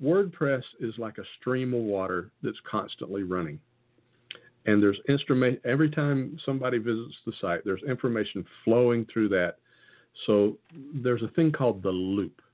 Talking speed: 145 wpm